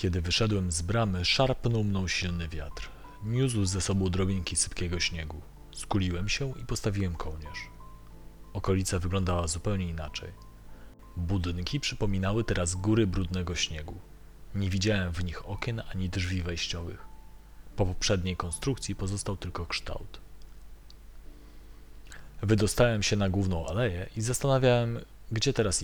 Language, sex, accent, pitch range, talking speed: Polish, male, native, 85-110 Hz, 120 wpm